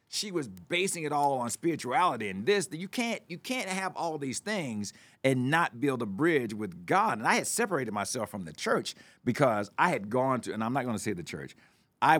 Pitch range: 105-155 Hz